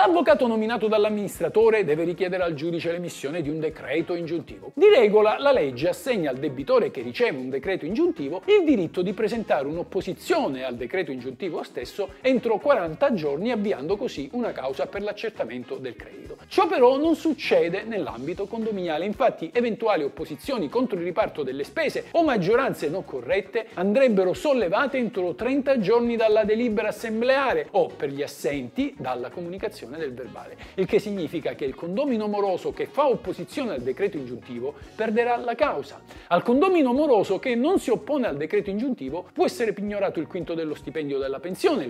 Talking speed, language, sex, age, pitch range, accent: 160 wpm, Italian, male, 50-69, 180-305 Hz, native